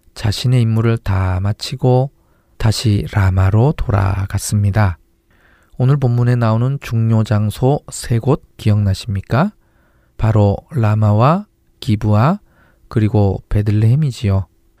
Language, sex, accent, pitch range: Korean, male, native, 105-130 Hz